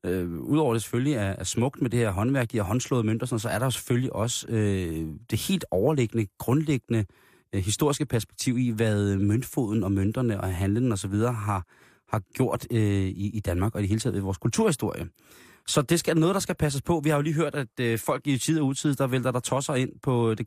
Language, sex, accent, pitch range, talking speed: Danish, male, native, 105-135 Hz, 215 wpm